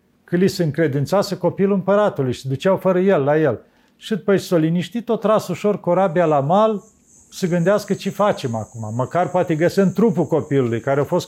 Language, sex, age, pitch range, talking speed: Romanian, male, 50-69, 140-195 Hz, 190 wpm